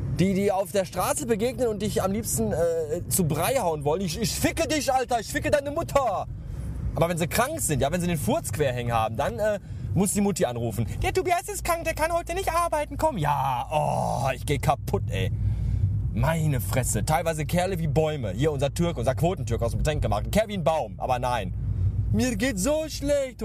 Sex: male